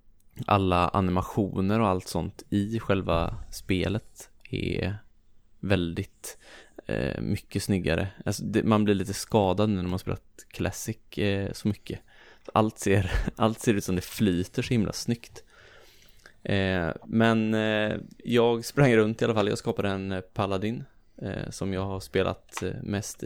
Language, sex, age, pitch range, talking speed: English, male, 20-39, 95-110 Hz, 130 wpm